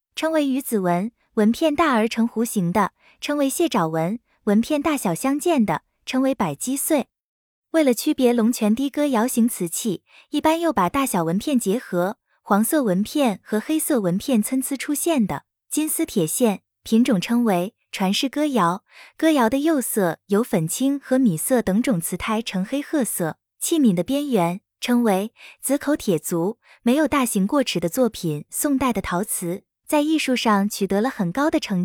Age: 20-39